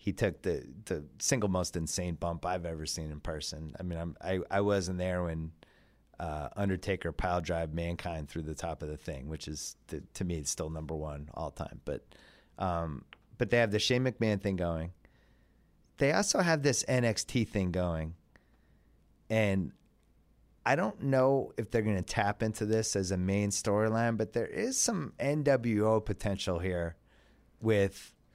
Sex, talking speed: male, 175 wpm